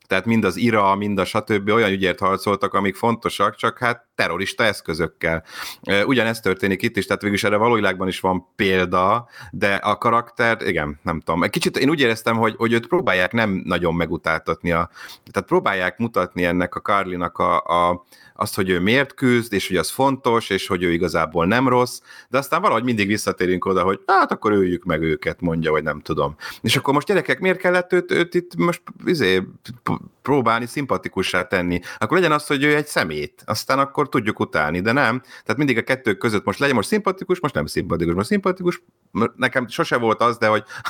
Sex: male